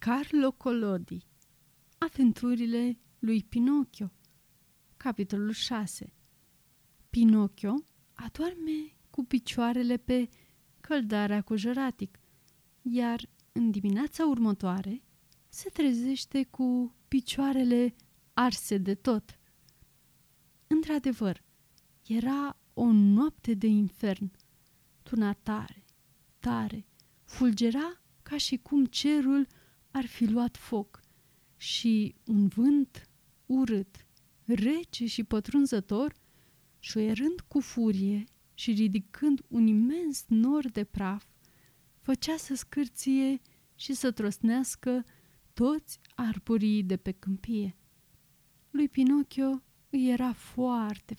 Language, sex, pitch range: Romanian, female, 205-265 Hz